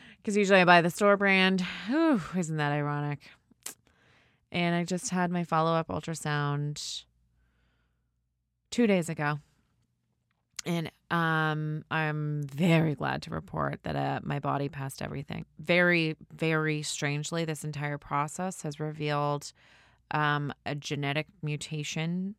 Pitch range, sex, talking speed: 145-175 Hz, female, 125 wpm